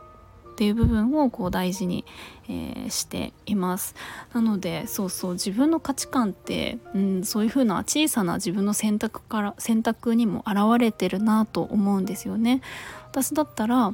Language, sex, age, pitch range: Japanese, female, 20-39, 195-240 Hz